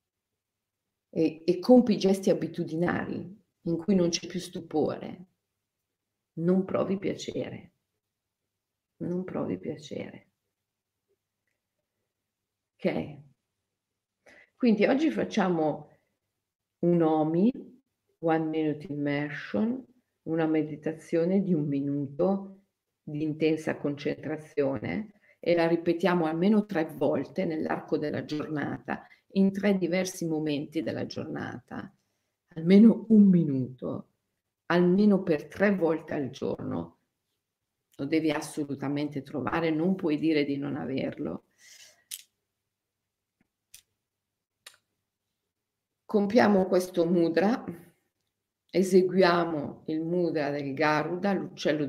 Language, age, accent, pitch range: Italian, 50-69, native, 130-185 Hz